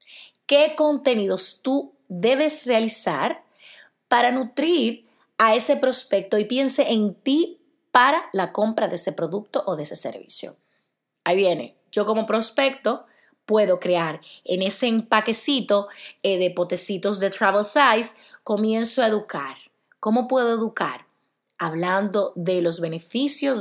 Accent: American